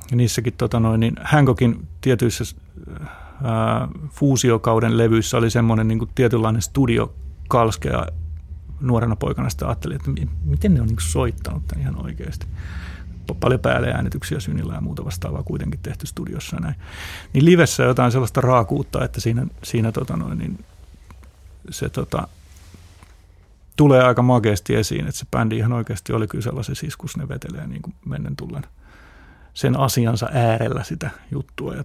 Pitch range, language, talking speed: 80-125 Hz, Finnish, 145 wpm